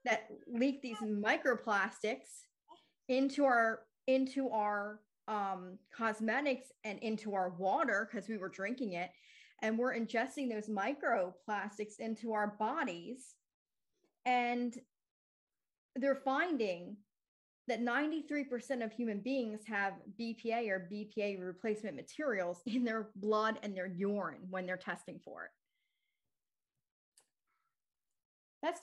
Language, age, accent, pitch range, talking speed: English, 40-59, American, 200-255 Hz, 110 wpm